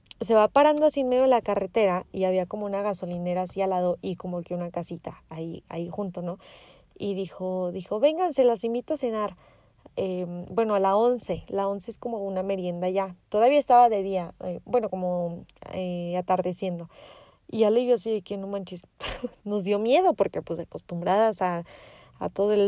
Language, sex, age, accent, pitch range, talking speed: Spanish, female, 30-49, Mexican, 180-220 Hz, 195 wpm